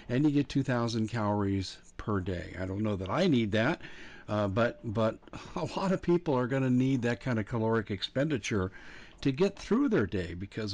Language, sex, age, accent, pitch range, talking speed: English, male, 50-69, American, 95-115 Hz, 200 wpm